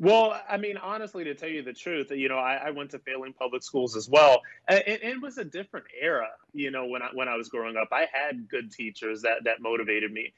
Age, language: 30-49, English